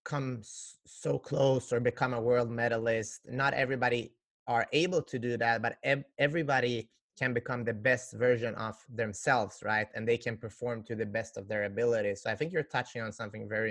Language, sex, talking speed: English, male, 190 wpm